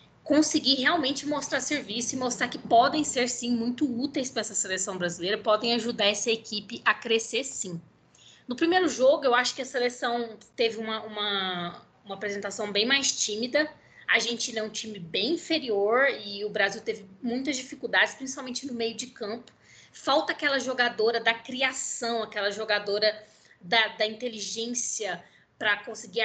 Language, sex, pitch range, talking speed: Portuguese, female, 210-255 Hz, 155 wpm